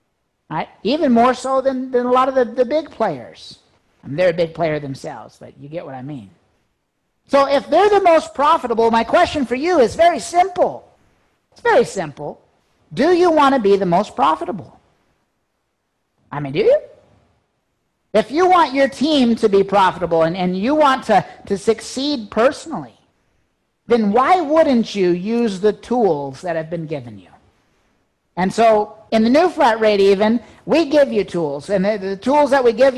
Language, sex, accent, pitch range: English, male, American, 195-260 Hz